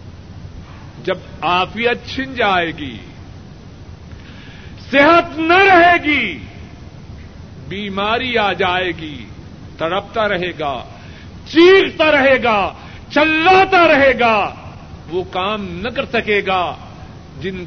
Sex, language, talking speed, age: male, Urdu, 100 wpm, 50-69